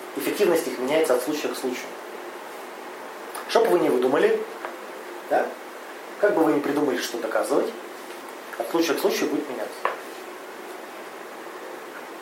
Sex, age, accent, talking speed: male, 30-49, native, 130 wpm